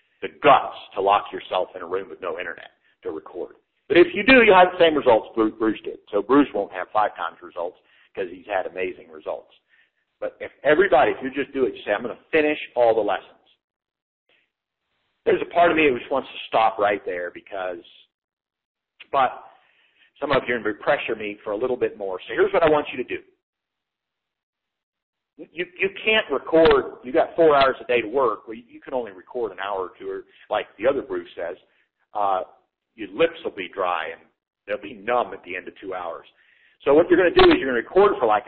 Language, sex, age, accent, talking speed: English, male, 50-69, American, 225 wpm